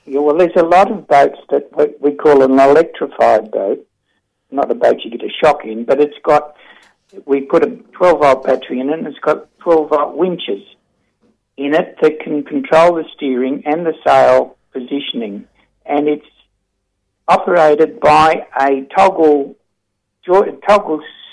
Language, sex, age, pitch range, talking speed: English, male, 60-79, 135-170 Hz, 150 wpm